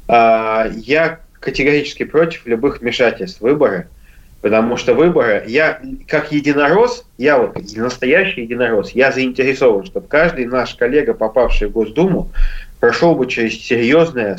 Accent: native